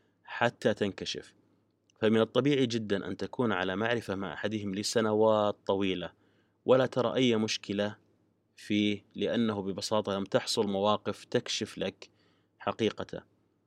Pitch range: 100-115 Hz